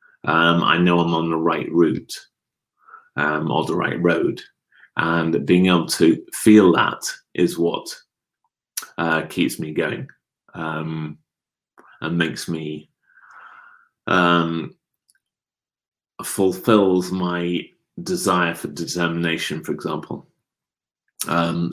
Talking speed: 105 wpm